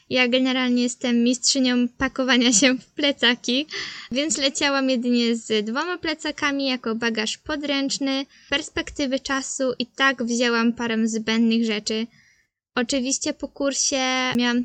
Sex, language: female, Polish